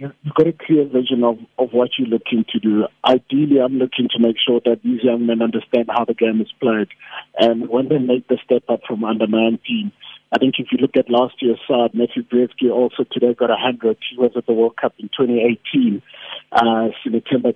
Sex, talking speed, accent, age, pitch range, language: male, 210 wpm, South African, 50-69, 120-135 Hz, English